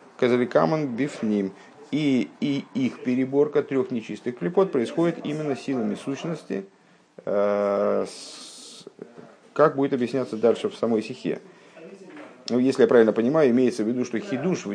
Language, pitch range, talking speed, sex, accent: Russian, 100-140 Hz, 135 wpm, male, native